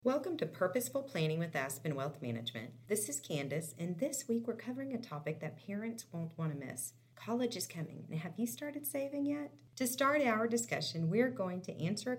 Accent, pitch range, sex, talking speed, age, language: American, 145-215 Hz, female, 205 wpm, 40-59, English